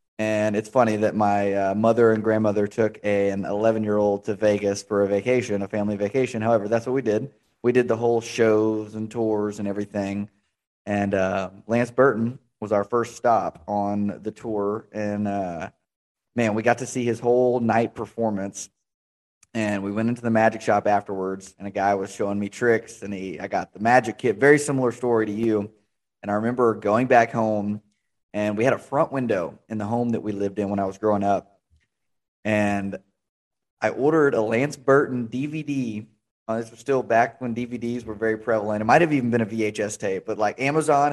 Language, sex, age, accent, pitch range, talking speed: English, male, 20-39, American, 105-120 Hz, 195 wpm